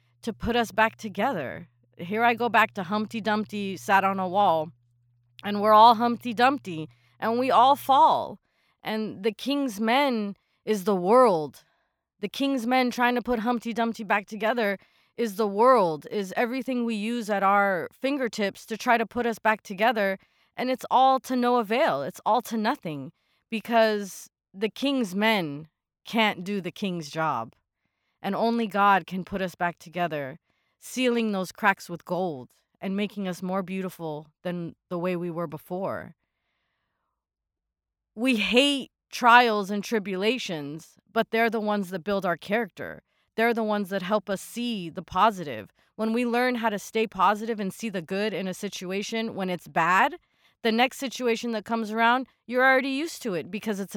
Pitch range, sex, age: 185-230 Hz, female, 30-49